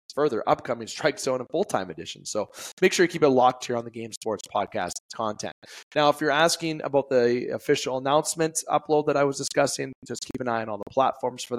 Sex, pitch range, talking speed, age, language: male, 105-140 Hz, 225 wpm, 20-39, English